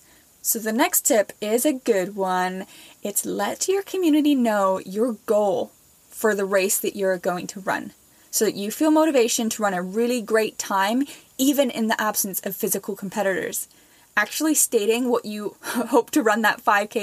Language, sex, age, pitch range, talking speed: English, female, 10-29, 200-260 Hz, 175 wpm